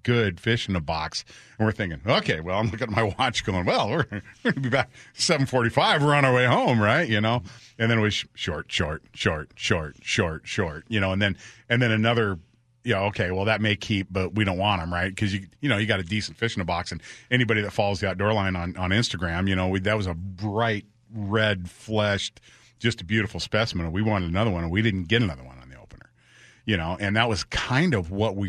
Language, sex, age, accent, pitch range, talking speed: English, male, 40-59, American, 95-120 Hz, 245 wpm